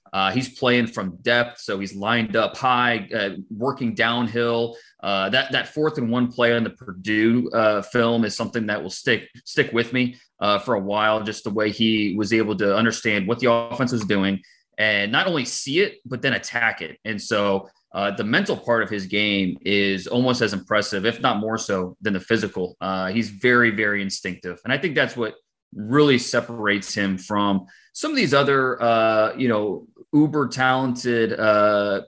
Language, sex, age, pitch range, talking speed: English, male, 30-49, 105-120 Hz, 195 wpm